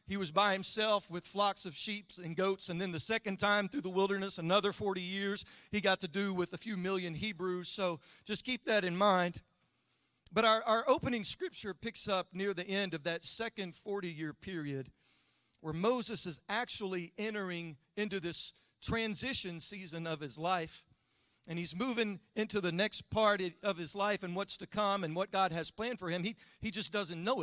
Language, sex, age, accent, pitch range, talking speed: English, male, 40-59, American, 155-205 Hz, 195 wpm